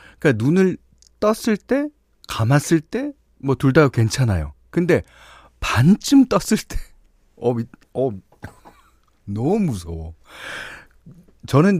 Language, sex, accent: Korean, male, native